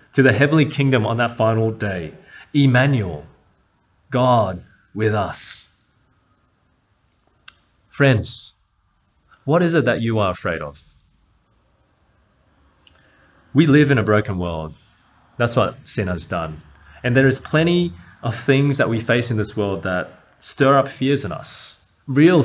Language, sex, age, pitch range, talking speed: English, male, 30-49, 100-135 Hz, 135 wpm